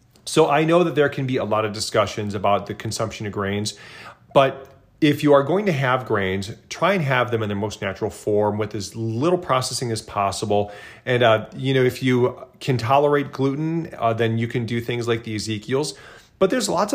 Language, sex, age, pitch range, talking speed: English, male, 30-49, 110-135 Hz, 210 wpm